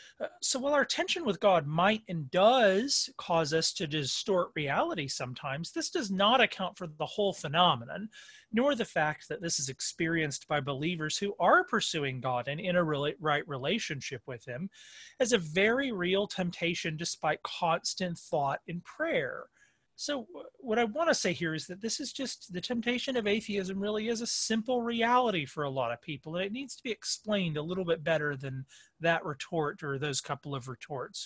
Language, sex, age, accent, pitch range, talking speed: English, male, 30-49, American, 145-215 Hz, 185 wpm